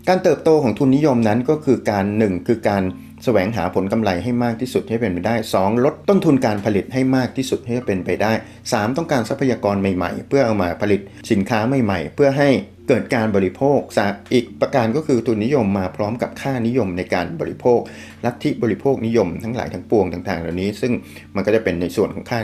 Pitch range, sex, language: 100-130 Hz, male, Thai